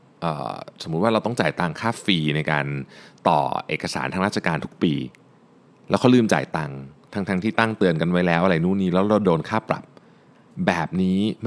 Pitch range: 90-130 Hz